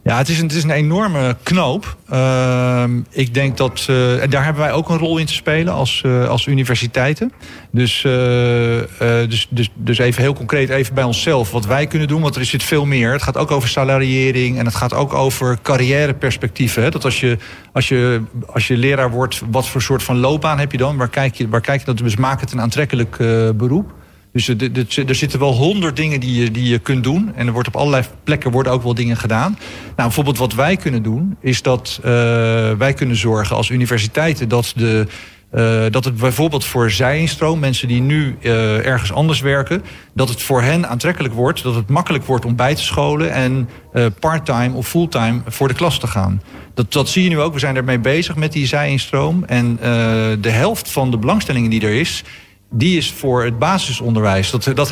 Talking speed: 205 wpm